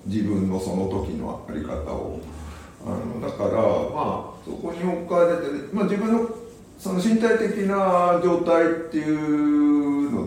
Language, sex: Japanese, male